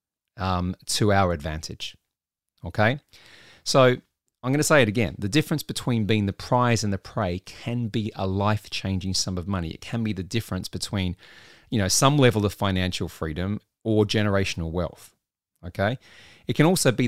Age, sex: 30-49, male